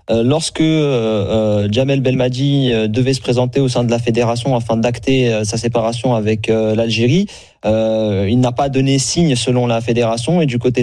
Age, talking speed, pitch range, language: 30-49, 175 wpm, 110-135 Hz, French